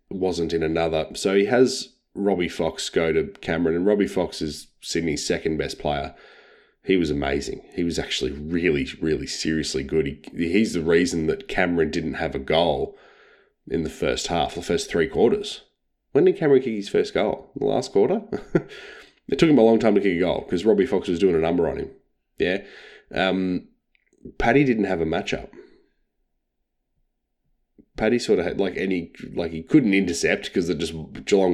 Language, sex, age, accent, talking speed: English, male, 20-39, Australian, 185 wpm